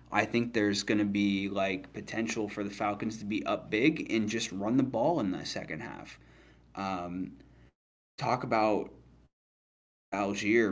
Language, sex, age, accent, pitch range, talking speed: English, male, 20-39, American, 95-115 Hz, 155 wpm